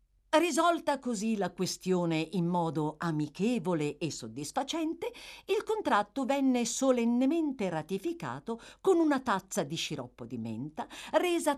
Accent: native